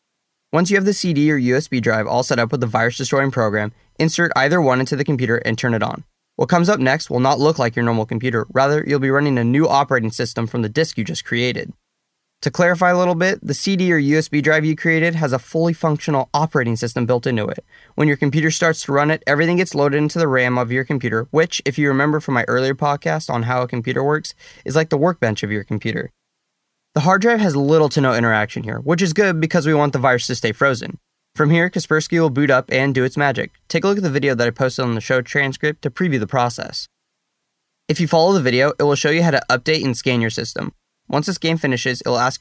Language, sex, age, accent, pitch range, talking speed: English, male, 20-39, American, 125-155 Hz, 250 wpm